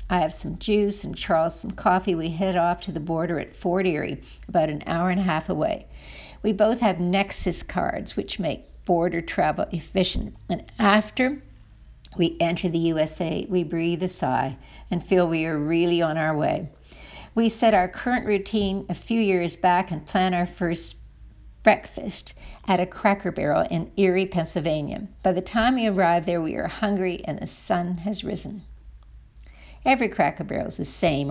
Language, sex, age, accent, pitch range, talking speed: English, female, 60-79, American, 165-195 Hz, 180 wpm